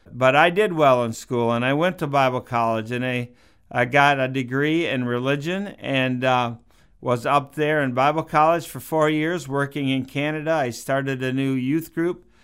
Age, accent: 50-69, American